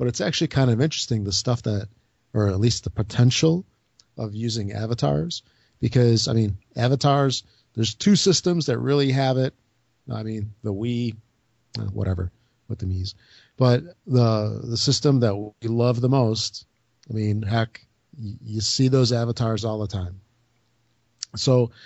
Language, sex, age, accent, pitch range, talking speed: English, male, 50-69, American, 110-130 Hz, 155 wpm